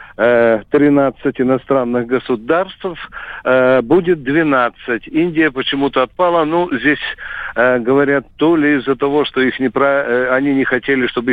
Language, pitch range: Russian, 130-160 Hz